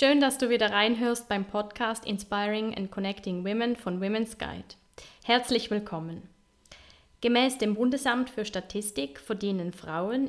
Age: 20-39